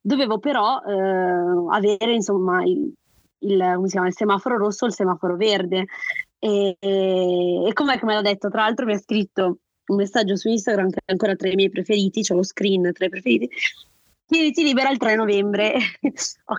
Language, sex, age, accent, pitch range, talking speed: Italian, female, 20-39, native, 190-235 Hz, 195 wpm